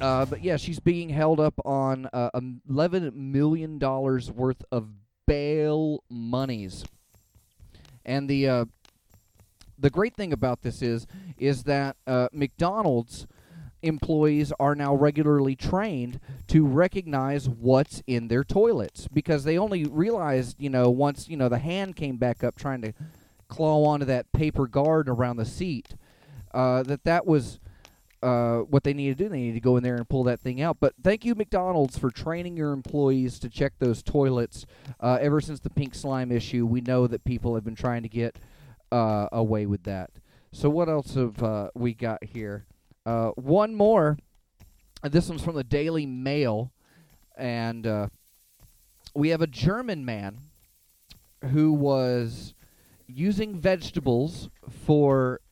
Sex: male